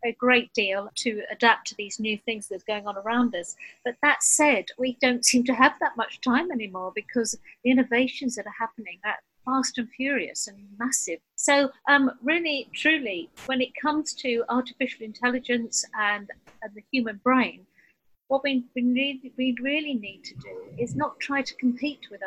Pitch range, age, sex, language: 220-275 Hz, 50-69, female, English